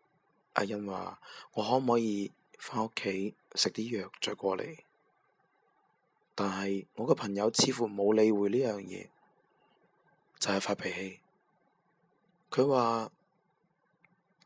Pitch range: 95-125 Hz